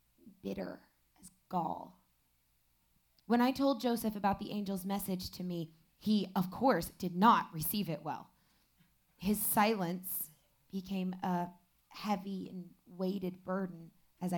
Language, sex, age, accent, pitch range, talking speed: English, female, 20-39, American, 175-235 Hz, 125 wpm